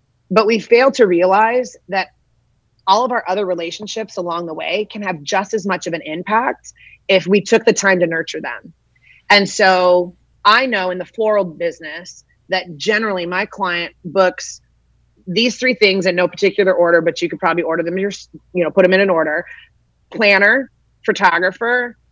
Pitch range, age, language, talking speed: 170-210 Hz, 30-49, English, 175 wpm